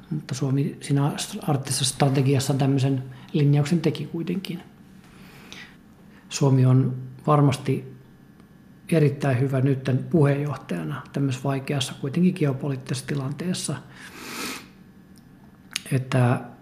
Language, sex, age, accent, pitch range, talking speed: Finnish, male, 50-69, native, 135-150 Hz, 80 wpm